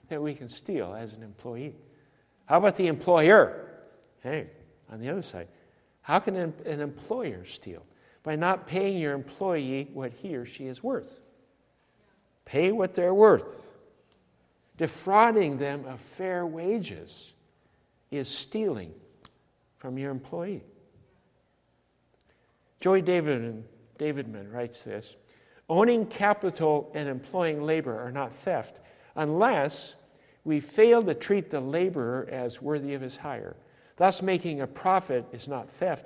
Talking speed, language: 130 wpm, English